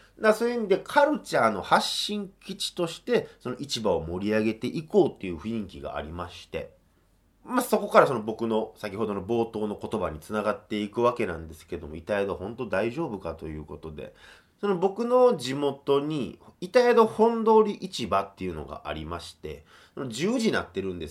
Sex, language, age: male, Japanese, 30-49